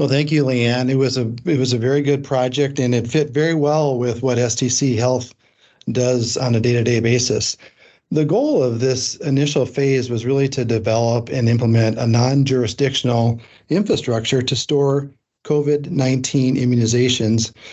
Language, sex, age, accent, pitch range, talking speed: English, male, 40-59, American, 120-140 Hz, 155 wpm